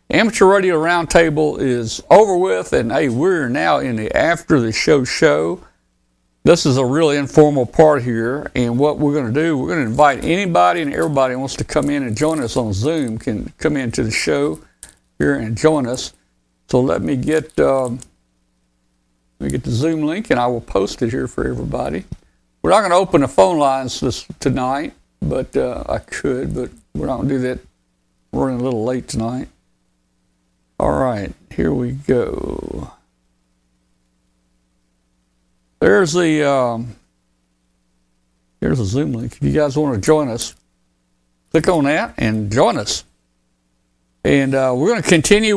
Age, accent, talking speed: 60-79, American, 170 wpm